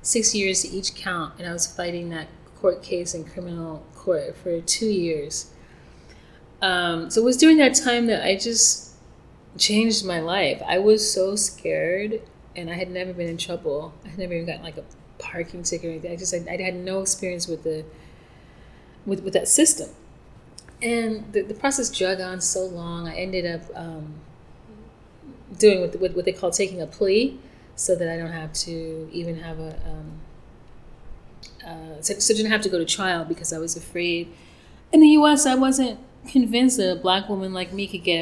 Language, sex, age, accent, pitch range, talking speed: English, female, 30-49, American, 170-215 Hz, 195 wpm